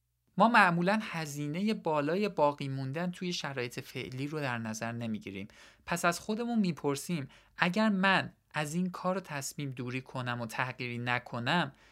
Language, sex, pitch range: Persian, male, 120-175 Hz